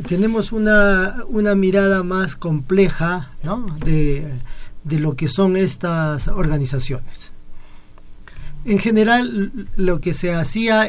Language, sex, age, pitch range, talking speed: Spanish, male, 40-59, 140-190 Hz, 110 wpm